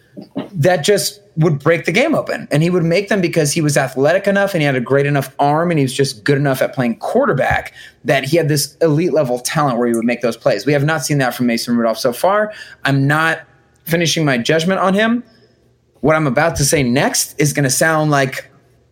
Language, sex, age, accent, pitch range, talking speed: English, male, 20-39, American, 130-170 Hz, 235 wpm